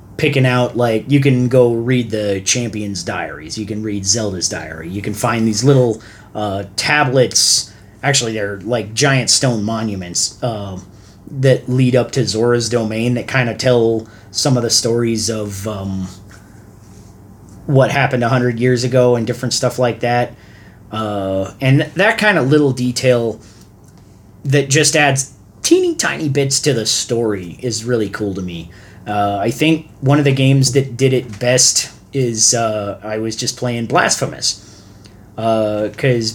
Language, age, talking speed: English, 30-49, 160 wpm